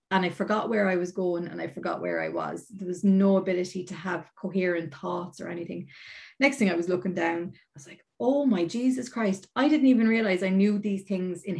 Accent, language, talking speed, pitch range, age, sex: Irish, English, 235 wpm, 180-215 Hz, 30-49, female